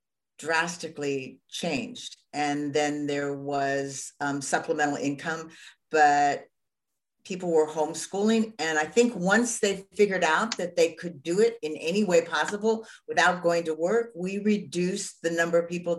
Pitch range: 150-195 Hz